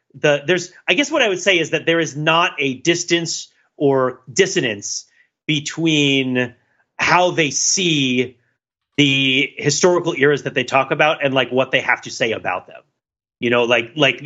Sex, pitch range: male, 125-165 Hz